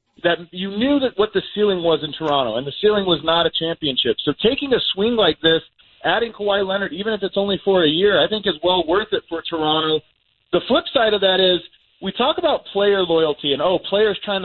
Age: 40-59